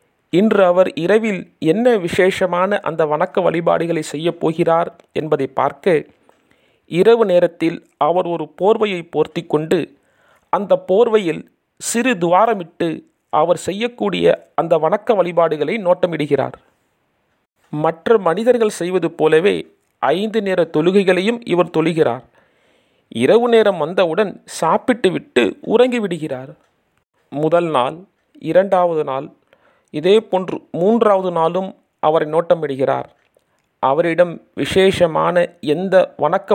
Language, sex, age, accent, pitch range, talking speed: Tamil, male, 40-59, native, 165-200 Hz, 90 wpm